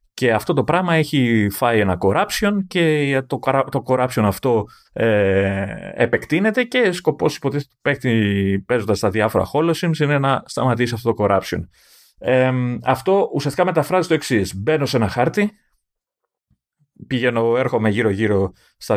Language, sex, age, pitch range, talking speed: Greek, male, 30-49, 105-155 Hz, 130 wpm